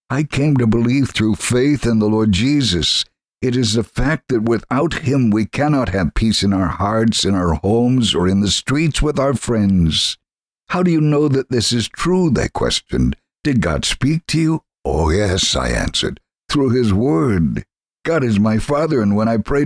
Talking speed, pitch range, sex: 195 wpm, 100-130 Hz, male